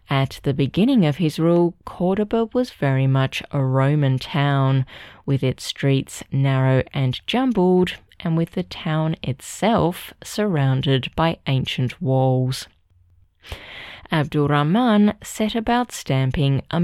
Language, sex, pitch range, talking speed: English, female, 135-170 Hz, 120 wpm